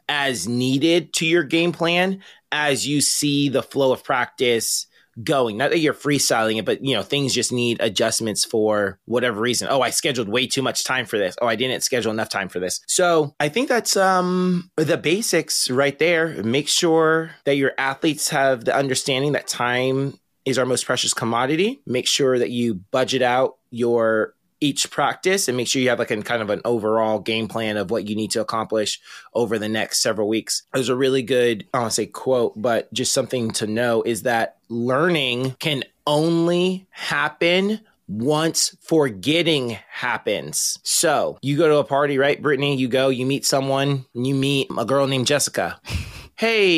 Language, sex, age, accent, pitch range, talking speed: English, male, 20-39, American, 120-160 Hz, 190 wpm